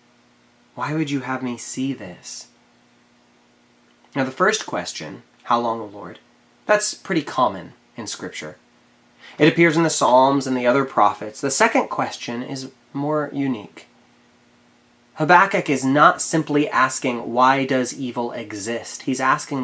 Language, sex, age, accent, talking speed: English, male, 30-49, American, 140 wpm